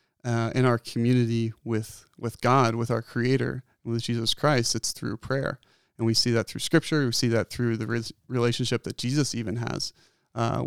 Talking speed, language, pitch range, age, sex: 190 wpm, English, 115-120 Hz, 30-49, male